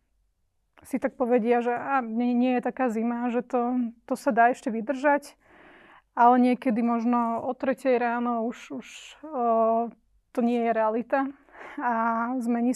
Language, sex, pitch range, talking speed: Slovak, female, 235-260 Hz, 150 wpm